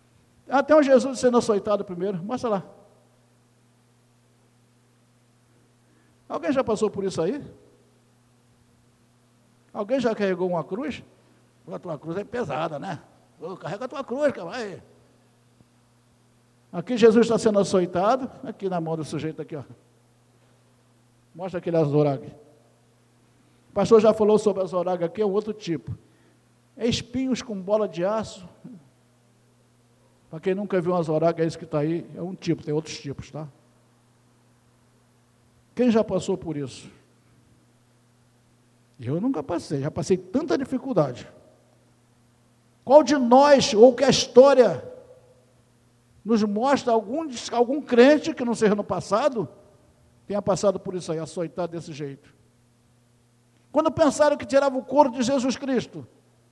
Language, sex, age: Portuguese, male, 60-79